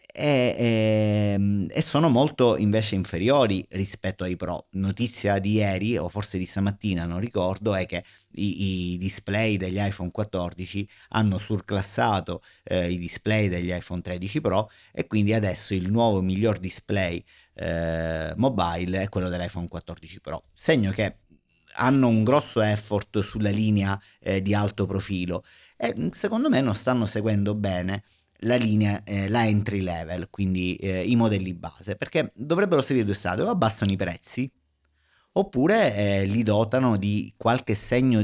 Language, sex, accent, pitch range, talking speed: Italian, male, native, 95-110 Hz, 150 wpm